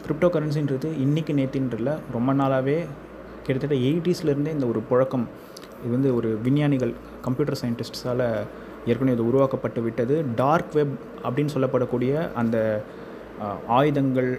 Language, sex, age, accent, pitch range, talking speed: Tamil, male, 20-39, native, 115-140 Hz, 115 wpm